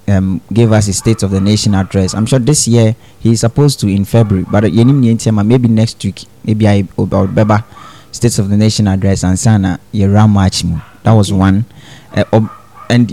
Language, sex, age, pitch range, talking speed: English, male, 20-39, 100-120 Hz, 180 wpm